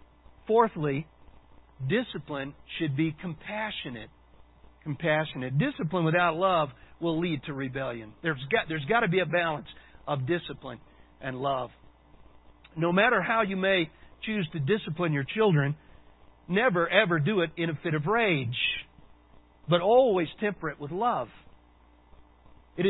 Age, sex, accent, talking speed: 50-69, male, American, 130 wpm